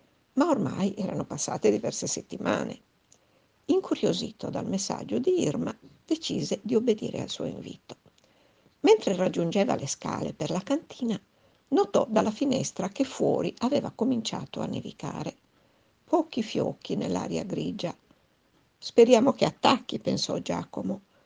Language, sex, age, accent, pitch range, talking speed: Italian, female, 60-79, native, 205-270 Hz, 120 wpm